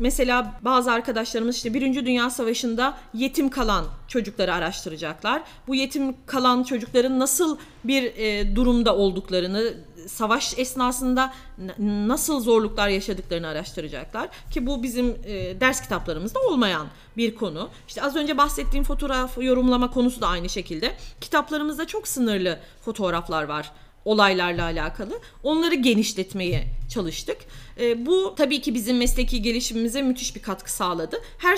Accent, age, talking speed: native, 40-59, 125 wpm